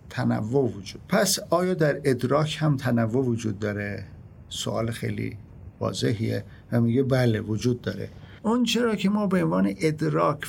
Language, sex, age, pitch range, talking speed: Persian, male, 50-69, 115-165 Hz, 145 wpm